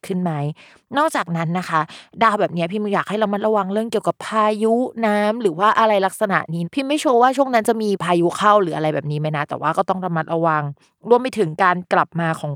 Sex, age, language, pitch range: female, 20-39, Thai, 165-215 Hz